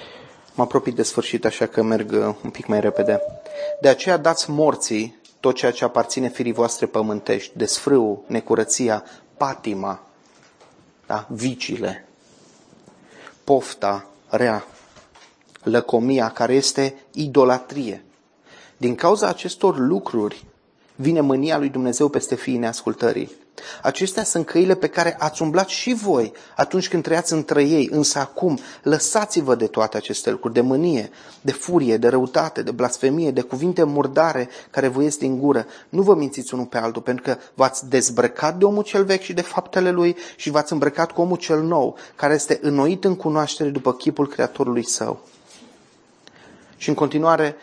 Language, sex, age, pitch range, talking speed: Romanian, male, 30-49, 125-165 Hz, 150 wpm